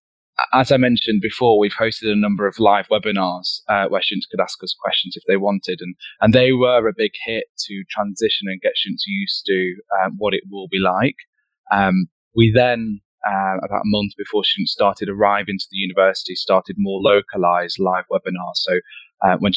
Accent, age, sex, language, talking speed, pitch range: British, 20-39, male, English, 195 wpm, 95-125 Hz